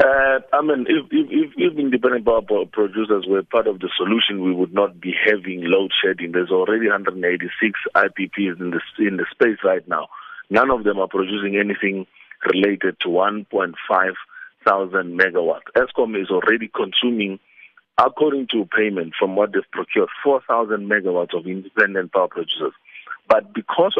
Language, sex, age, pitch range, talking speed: English, male, 50-69, 100-135 Hz, 155 wpm